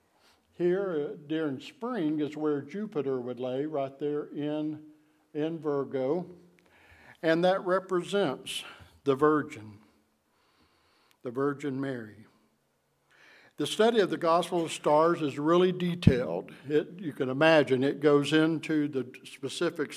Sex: male